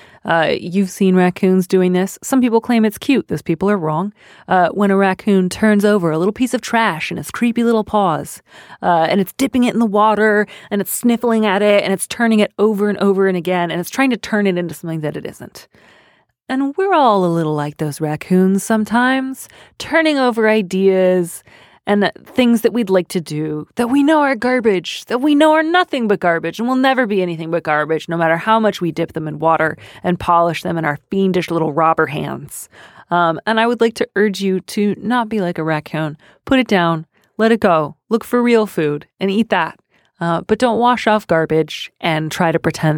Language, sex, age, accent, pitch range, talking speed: English, female, 30-49, American, 165-225 Hz, 220 wpm